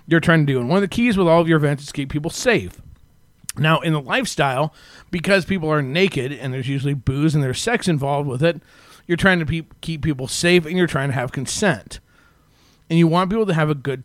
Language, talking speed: English, 245 wpm